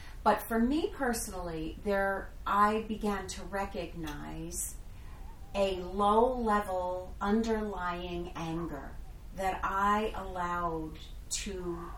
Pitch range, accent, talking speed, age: 165-220 Hz, American, 85 wpm, 40-59